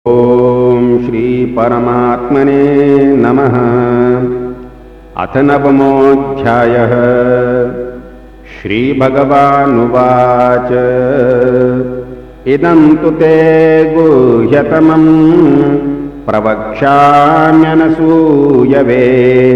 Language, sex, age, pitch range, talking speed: Hindi, male, 50-69, 125-160 Hz, 35 wpm